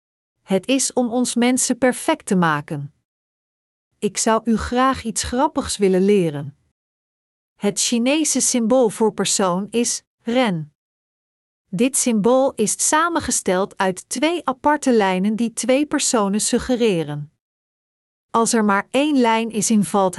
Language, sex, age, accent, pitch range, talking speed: Dutch, female, 40-59, Dutch, 195-250 Hz, 125 wpm